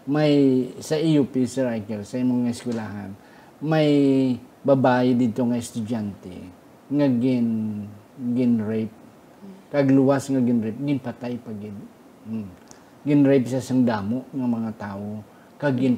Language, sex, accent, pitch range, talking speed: Filipino, male, native, 110-130 Hz, 110 wpm